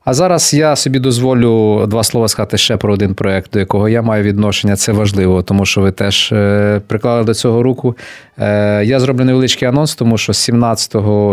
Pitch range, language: 100-120 Hz, English